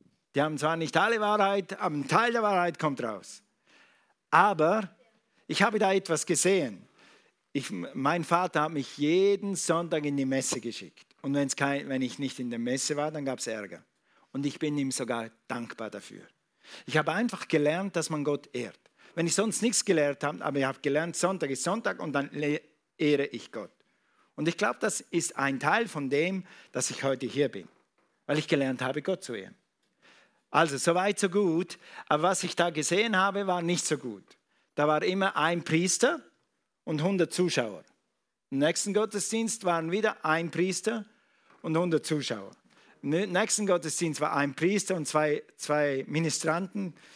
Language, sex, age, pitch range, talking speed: German, male, 50-69, 140-180 Hz, 175 wpm